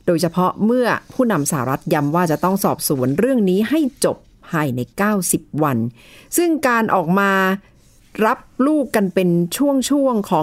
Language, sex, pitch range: Thai, female, 155-210 Hz